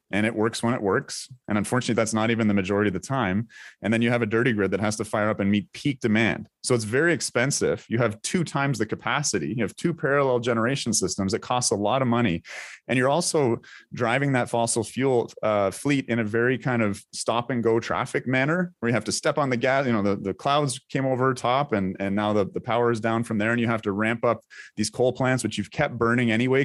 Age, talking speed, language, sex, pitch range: 30-49, 255 wpm, English, male, 100-125 Hz